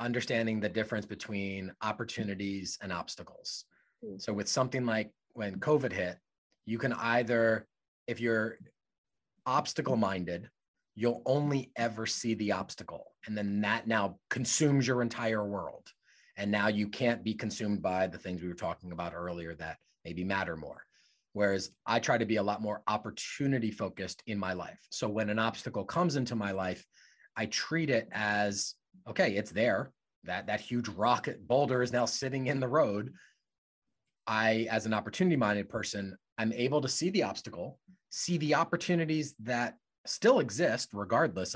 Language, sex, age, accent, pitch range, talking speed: English, male, 30-49, American, 100-125 Hz, 155 wpm